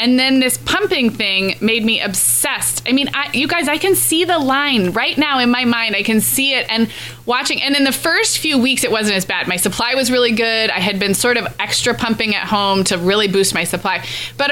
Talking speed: 240 wpm